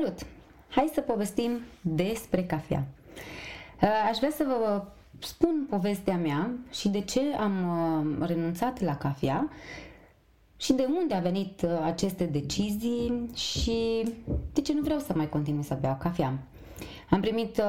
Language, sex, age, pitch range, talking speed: Romanian, female, 20-39, 160-220 Hz, 135 wpm